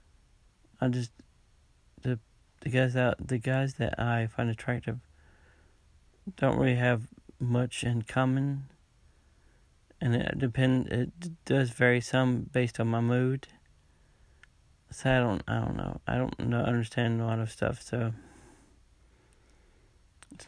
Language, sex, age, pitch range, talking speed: English, male, 40-59, 115-130 Hz, 130 wpm